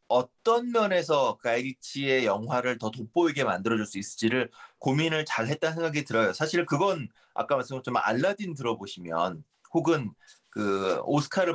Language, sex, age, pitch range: Korean, male, 30-49, 115-165 Hz